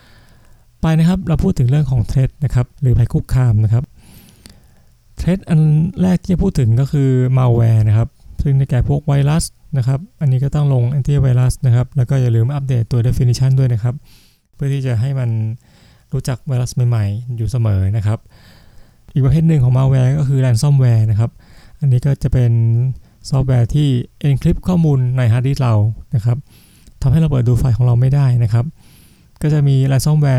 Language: Thai